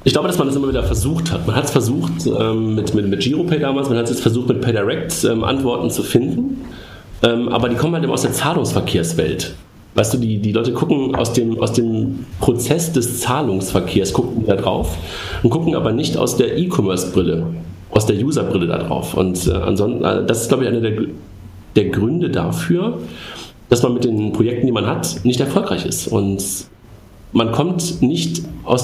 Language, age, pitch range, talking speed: German, 40-59, 105-135 Hz, 195 wpm